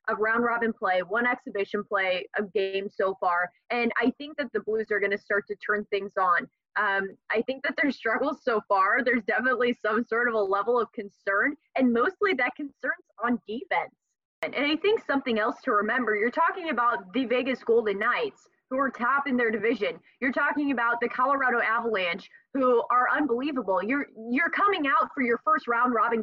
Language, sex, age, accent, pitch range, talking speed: English, female, 20-39, American, 215-290 Hz, 190 wpm